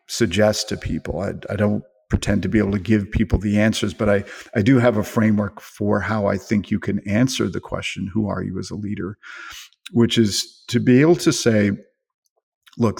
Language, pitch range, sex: English, 100-115 Hz, male